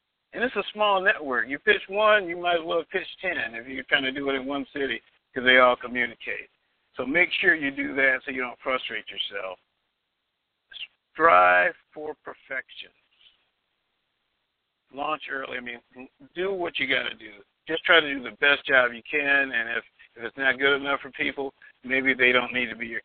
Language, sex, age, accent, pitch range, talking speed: English, male, 50-69, American, 125-160 Hz, 200 wpm